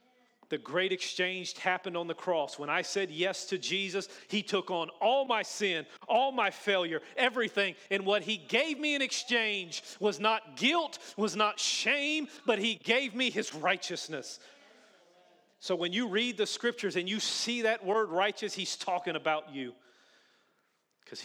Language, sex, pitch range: English, male, 150-205 Hz